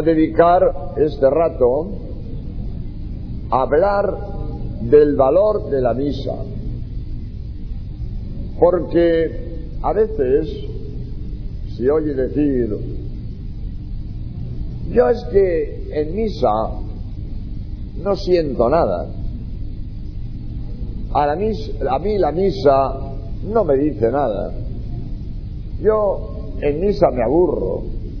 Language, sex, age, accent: Spanish, male, 50-69, Spanish